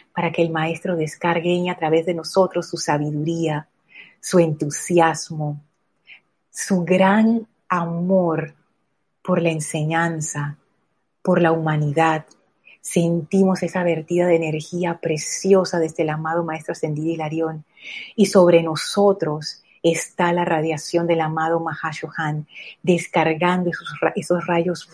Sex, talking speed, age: female, 110 wpm, 30-49